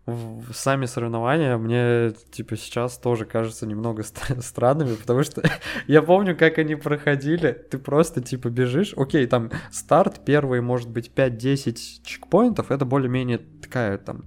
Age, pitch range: 20-39, 125-150 Hz